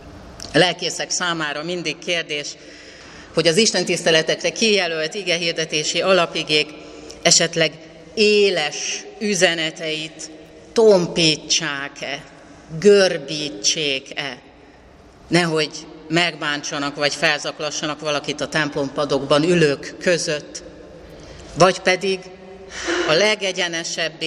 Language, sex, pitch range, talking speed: Hungarian, female, 145-175 Hz, 75 wpm